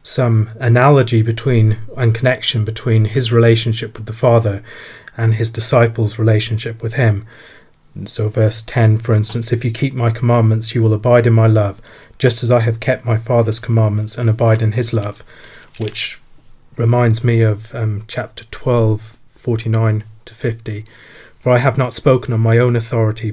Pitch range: 110-125 Hz